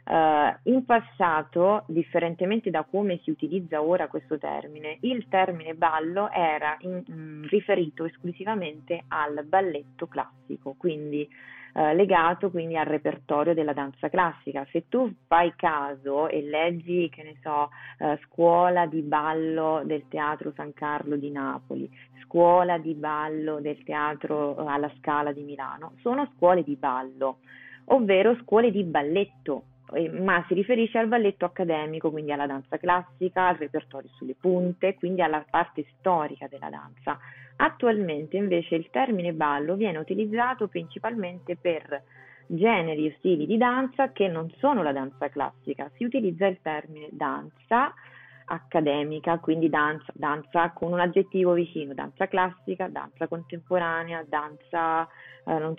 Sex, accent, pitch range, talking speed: female, native, 150-185 Hz, 130 wpm